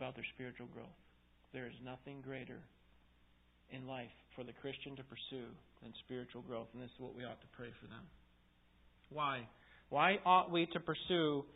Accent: American